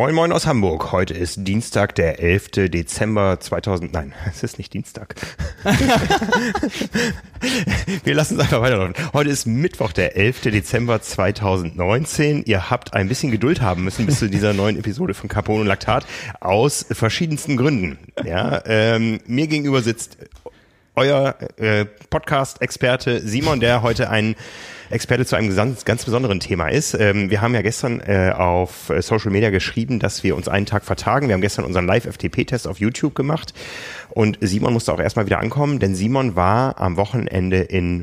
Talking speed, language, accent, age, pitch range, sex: 160 wpm, German, German, 30-49, 100-125 Hz, male